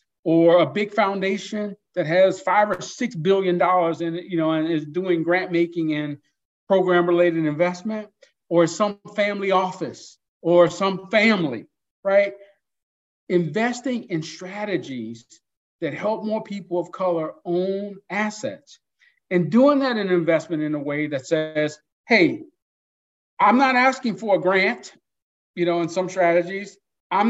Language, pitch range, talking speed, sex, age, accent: English, 165-230 Hz, 145 wpm, male, 50-69, American